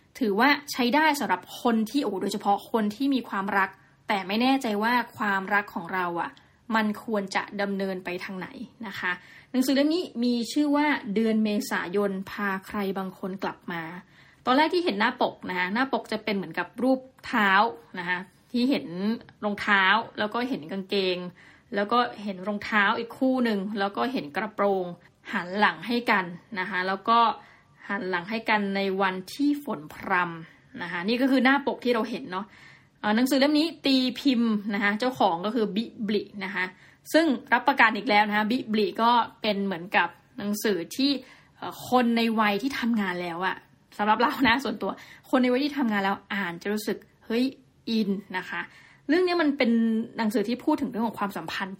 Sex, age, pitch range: female, 20-39, 195-245 Hz